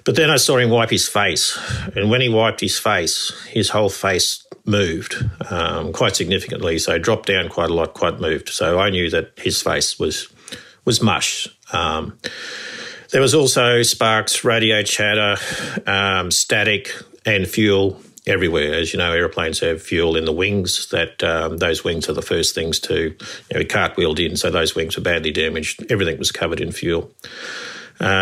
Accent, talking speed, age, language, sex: Australian, 185 wpm, 50-69, English, male